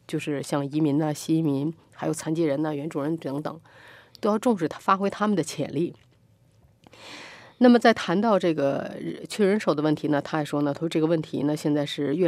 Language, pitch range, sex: Chinese, 145-180 Hz, female